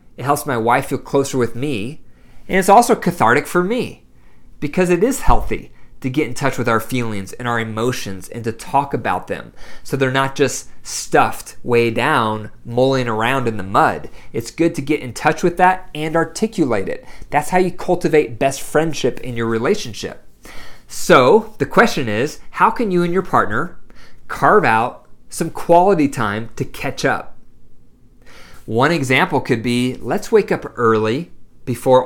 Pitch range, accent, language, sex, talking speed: 125-170 Hz, American, English, male, 170 wpm